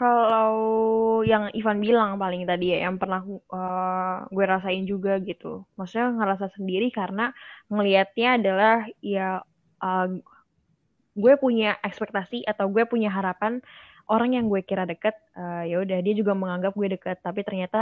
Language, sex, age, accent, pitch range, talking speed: Indonesian, female, 10-29, native, 185-225 Hz, 145 wpm